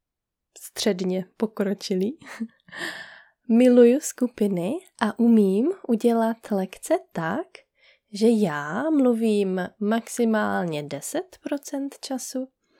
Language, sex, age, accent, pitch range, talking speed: Czech, female, 20-39, native, 195-260 Hz, 70 wpm